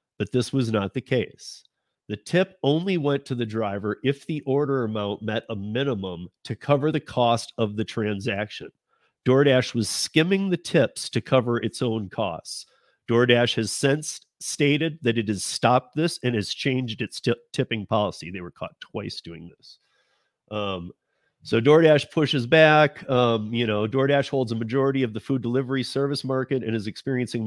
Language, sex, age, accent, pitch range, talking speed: English, male, 40-59, American, 110-140 Hz, 175 wpm